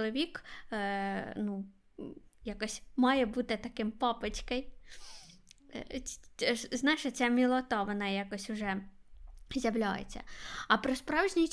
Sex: female